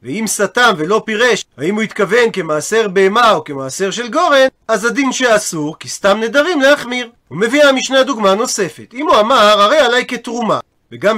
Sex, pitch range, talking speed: male, 200-255 Hz, 170 wpm